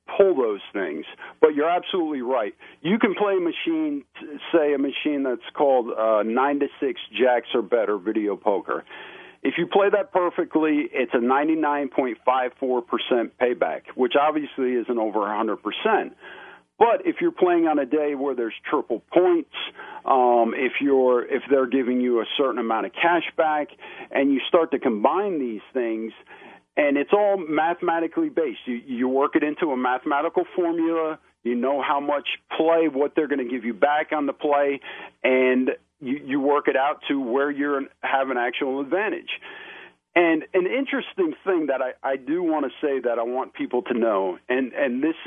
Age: 50-69